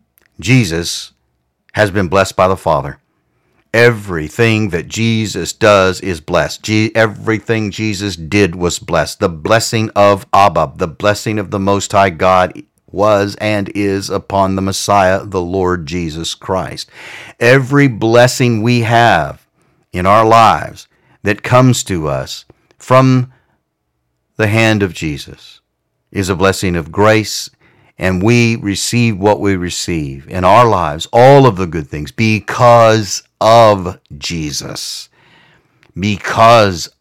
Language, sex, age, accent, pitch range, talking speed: English, male, 50-69, American, 90-115 Hz, 130 wpm